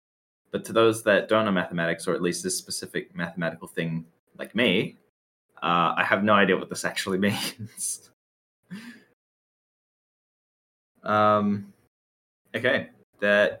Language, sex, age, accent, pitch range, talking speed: English, male, 20-39, Australian, 85-105 Hz, 125 wpm